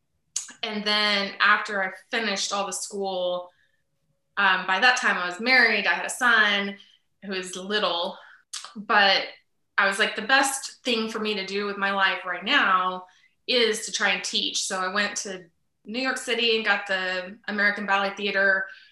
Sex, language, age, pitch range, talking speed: female, English, 20-39, 195-225 Hz, 180 wpm